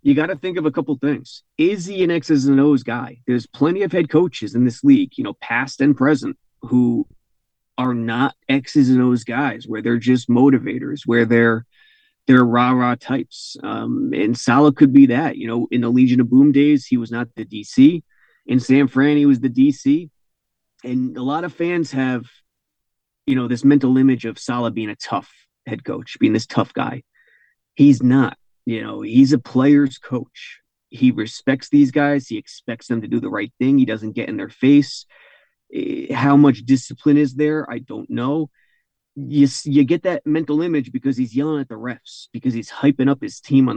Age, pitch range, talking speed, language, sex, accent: 30-49, 125-145 Hz, 200 wpm, English, male, American